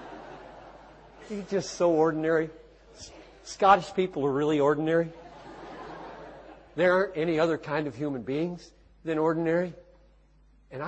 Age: 60-79